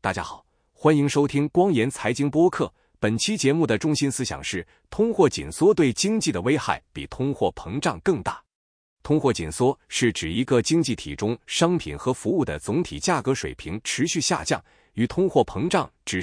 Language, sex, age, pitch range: Chinese, male, 30-49, 105-145 Hz